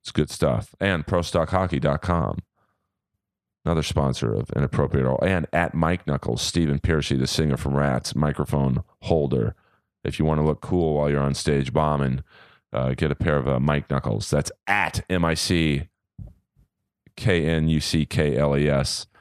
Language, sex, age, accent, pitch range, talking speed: English, male, 30-49, American, 65-75 Hz, 135 wpm